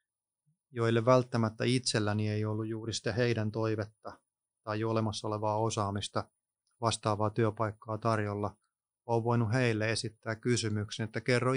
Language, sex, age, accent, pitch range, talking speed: Finnish, male, 30-49, native, 105-115 Hz, 120 wpm